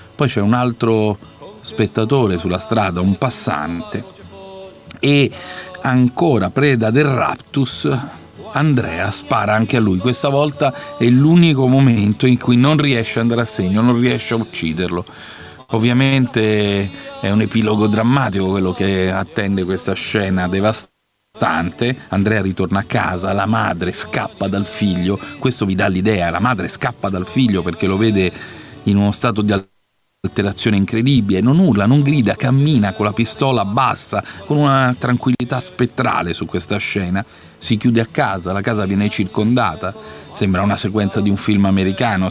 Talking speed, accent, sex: 150 wpm, native, male